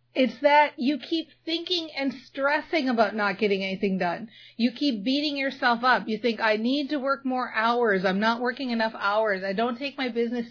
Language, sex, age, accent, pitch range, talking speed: English, female, 40-59, American, 210-260 Hz, 200 wpm